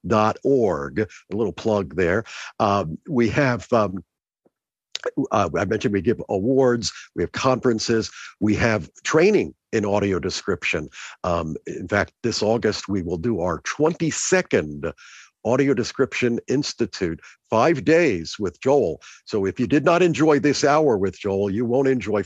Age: 50-69